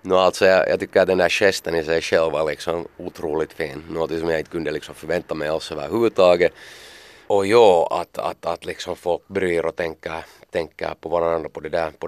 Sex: male